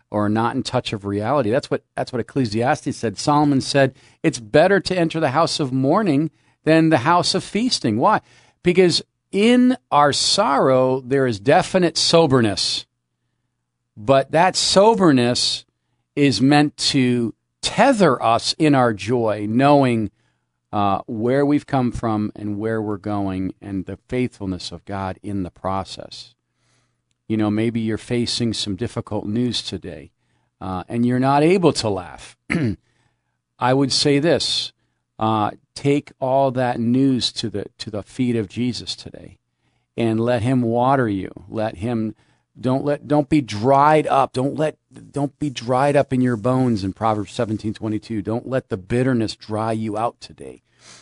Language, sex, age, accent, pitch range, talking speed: English, male, 50-69, American, 105-140 Hz, 155 wpm